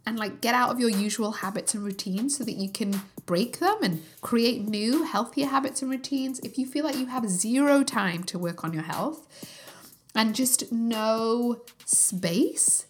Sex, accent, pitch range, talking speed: female, British, 195-245 Hz, 185 wpm